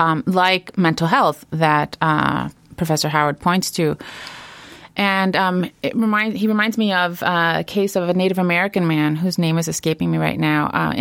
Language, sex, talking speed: English, female, 185 wpm